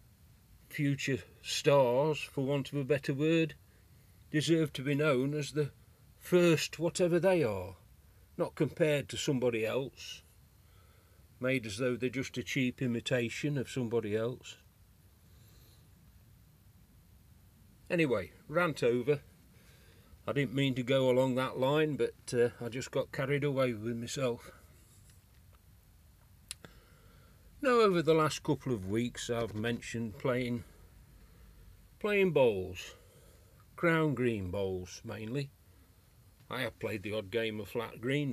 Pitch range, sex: 105-145 Hz, male